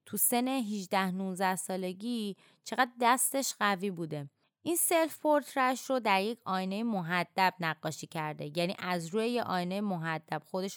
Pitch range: 180-230 Hz